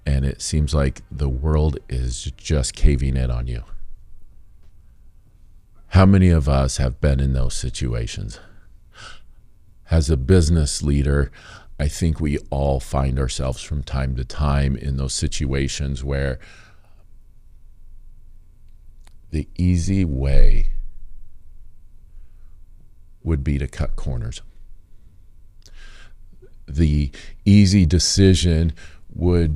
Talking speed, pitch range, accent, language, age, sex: 105 wpm, 70-95 Hz, American, English, 50-69, male